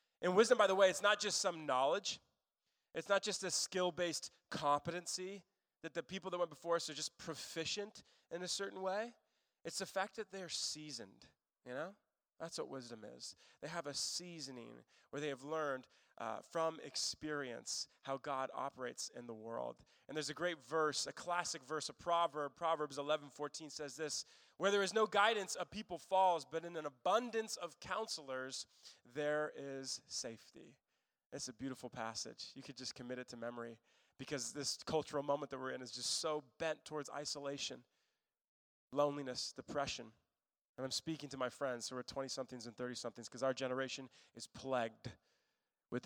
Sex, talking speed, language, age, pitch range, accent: male, 175 wpm, English, 20-39, 130-170 Hz, American